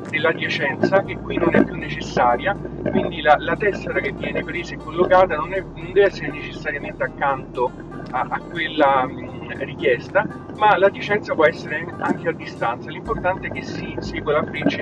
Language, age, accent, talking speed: Italian, 40-59, native, 160 wpm